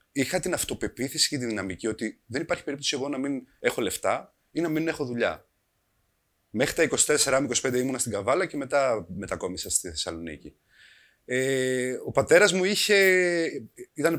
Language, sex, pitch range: Greek, male, 110-150 Hz